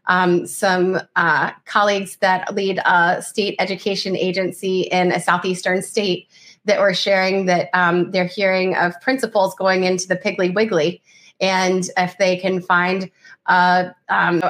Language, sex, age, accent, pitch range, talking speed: English, female, 30-49, American, 185-215 Hz, 145 wpm